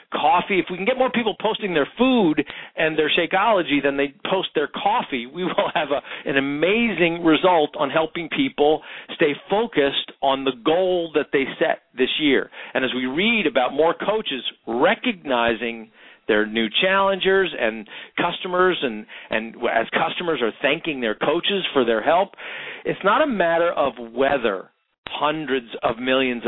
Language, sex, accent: English, male, American